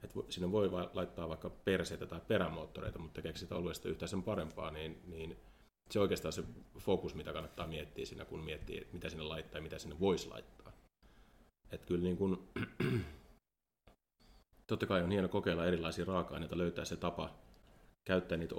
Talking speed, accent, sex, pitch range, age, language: 170 wpm, native, male, 80-90 Hz, 30-49, Finnish